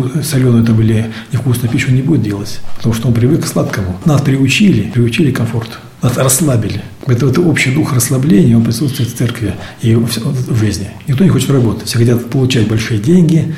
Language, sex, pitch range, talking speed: Russian, male, 115-135 Hz, 185 wpm